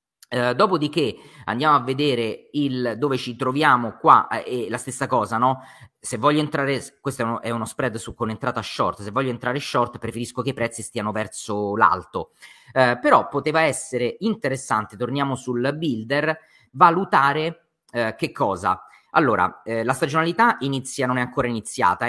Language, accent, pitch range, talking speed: Italian, native, 120-155 Hz, 155 wpm